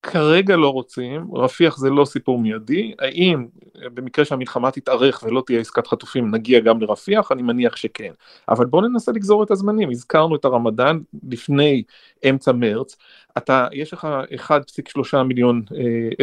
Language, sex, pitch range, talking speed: Hebrew, male, 125-160 Hz, 150 wpm